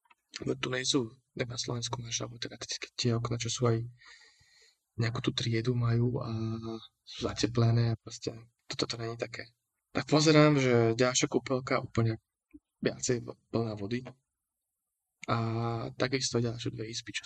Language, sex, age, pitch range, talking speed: Slovak, male, 20-39, 115-130 Hz, 145 wpm